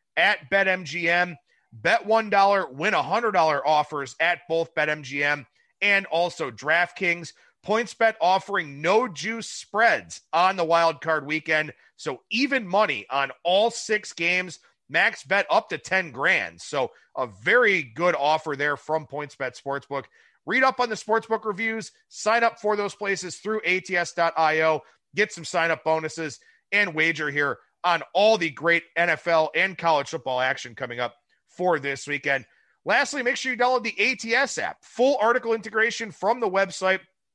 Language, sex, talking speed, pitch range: English, male, 160 wpm, 160-215 Hz